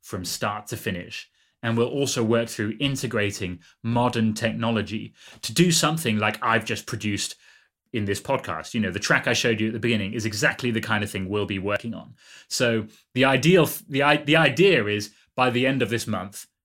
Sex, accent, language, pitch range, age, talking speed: male, British, English, 105-145 Hz, 30-49, 200 wpm